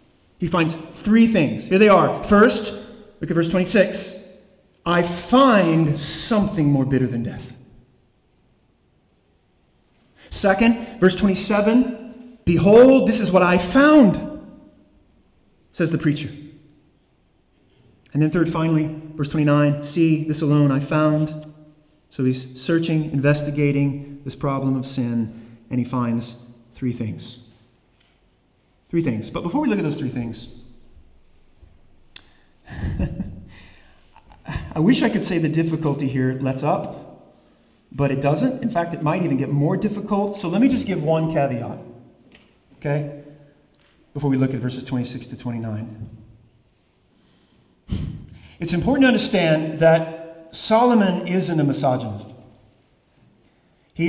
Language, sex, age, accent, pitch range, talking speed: English, male, 30-49, American, 125-185 Hz, 125 wpm